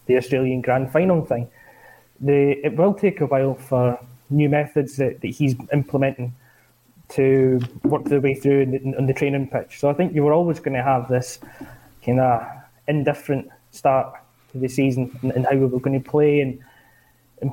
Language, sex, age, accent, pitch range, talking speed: English, male, 20-39, British, 130-150 Hz, 190 wpm